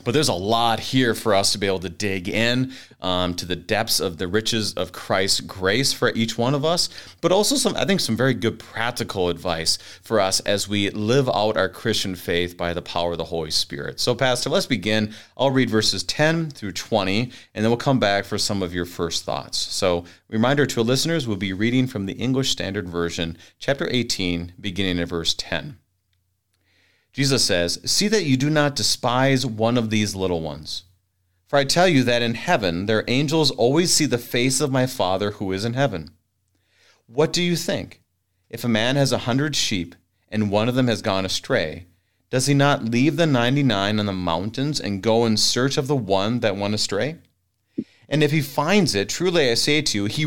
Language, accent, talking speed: English, American, 210 wpm